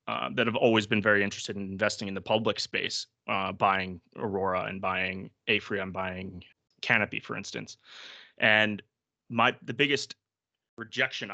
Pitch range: 100-120 Hz